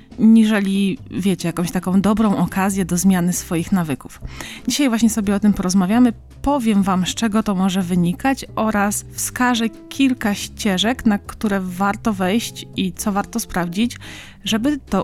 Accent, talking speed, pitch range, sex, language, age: native, 150 wpm, 180-215 Hz, female, Polish, 20-39